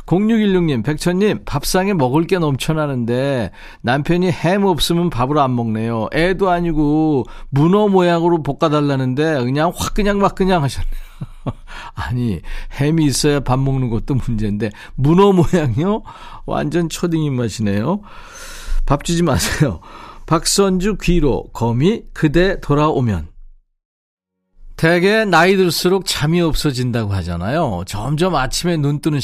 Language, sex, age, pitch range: Korean, male, 40-59, 125-175 Hz